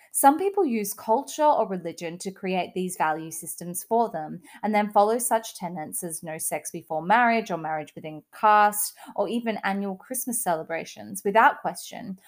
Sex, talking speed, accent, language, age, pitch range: female, 170 wpm, Australian, English, 20-39, 175-230 Hz